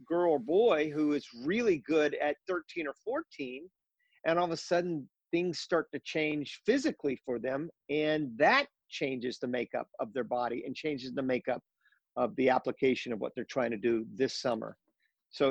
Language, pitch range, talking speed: English, 125-160 Hz, 180 wpm